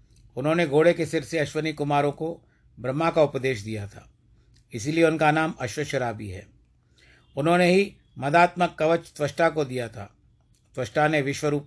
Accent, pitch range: native, 120-150 Hz